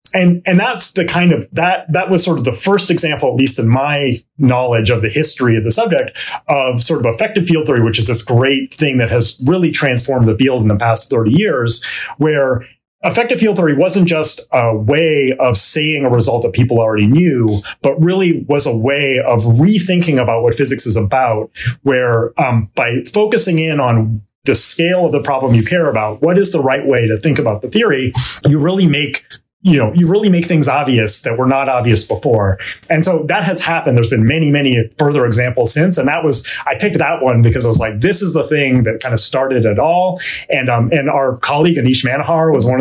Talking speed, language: 220 wpm, English